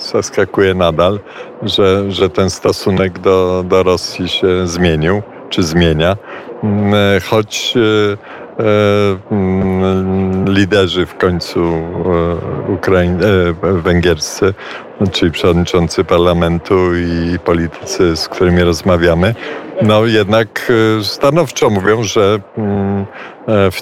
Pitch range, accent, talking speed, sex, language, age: 90-105 Hz, native, 95 wpm, male, Polish, 50-69